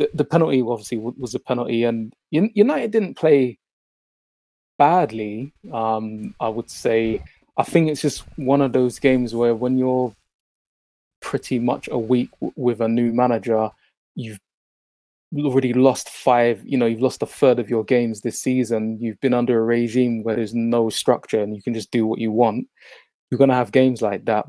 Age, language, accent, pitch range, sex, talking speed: 20-39, English, British, 115-135 Hz, male, 180 wpm